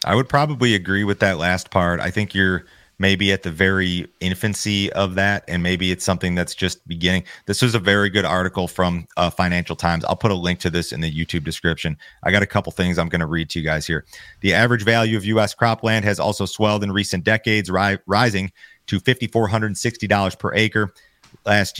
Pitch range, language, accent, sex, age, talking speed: 90-105 Hz, English, American, male, 30-49, 210 wpm